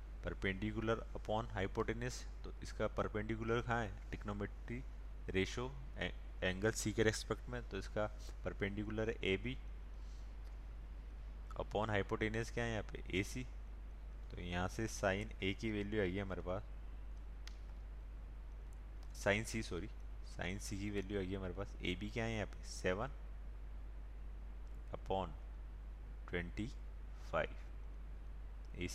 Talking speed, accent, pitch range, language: 120 wpm, native, 75-105 Hz, Hindi